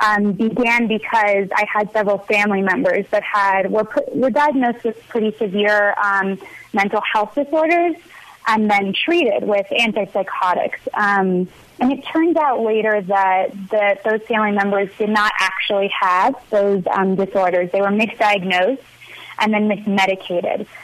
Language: English